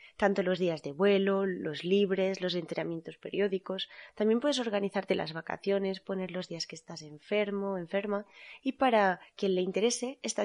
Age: 20-39